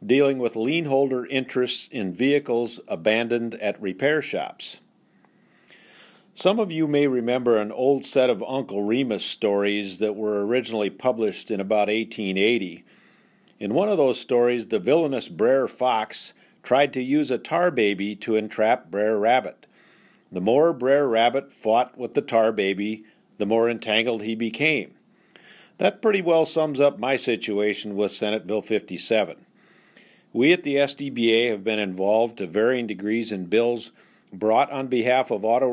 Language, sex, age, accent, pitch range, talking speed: English, male, 50-69, American, 110-135 Hz, 150 wpm